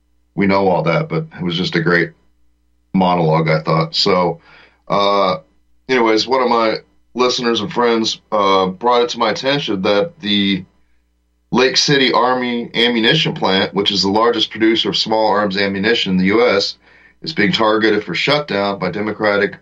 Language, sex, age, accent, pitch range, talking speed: English, male, 30-49, American, 85-115 Hz, 165 wpm